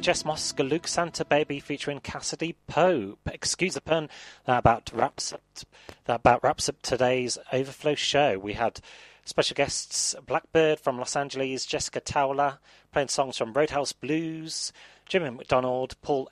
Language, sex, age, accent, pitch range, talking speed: English, male, 30-49, British, 120-150 Hz, 145 wpm